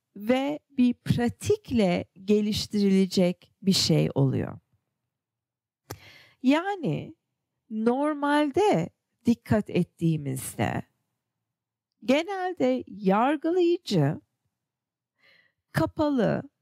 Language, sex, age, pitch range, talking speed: English, female, 40-59, 175-270 Hz, 50 wpm